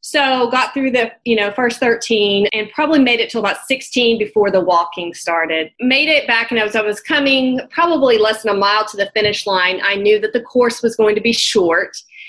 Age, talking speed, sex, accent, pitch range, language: 30-49, 225 wpm, female, American, 210-265 Hz, English